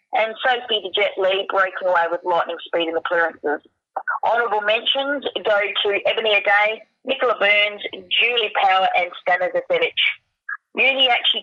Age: 30-49